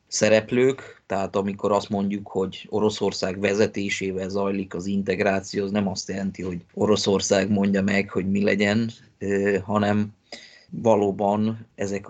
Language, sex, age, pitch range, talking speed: Hungarian, male, 20-39, 100-110 Hz, 125 wpm